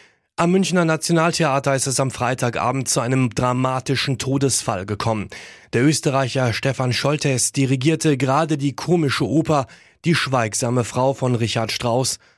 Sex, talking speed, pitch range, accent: male, 130 wpm, 115-140 Hz, German